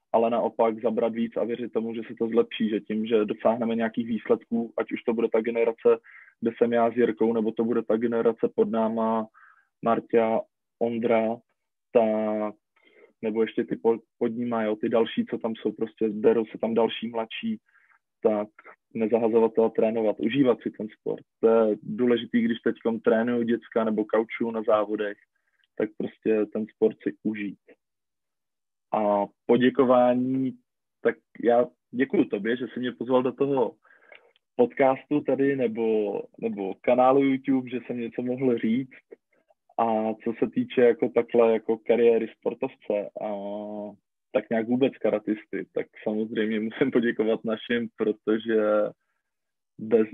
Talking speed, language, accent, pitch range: 145 wpm, Czech, native, 110-120 Hz